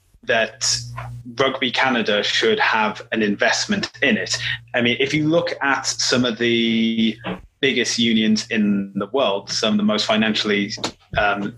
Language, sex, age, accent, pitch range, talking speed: English, male, 30-49, British, 105-130 Hz, 150 wpm